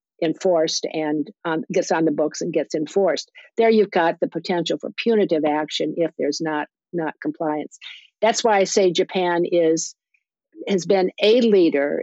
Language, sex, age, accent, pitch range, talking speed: English, female, 50-69, American, 155-185 Hz, 165 wpm